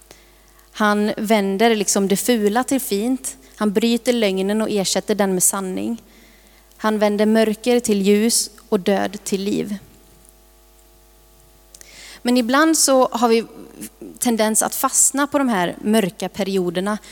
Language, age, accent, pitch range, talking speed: Swedish, 30-49, native, 195-230 Hz, 130 wpm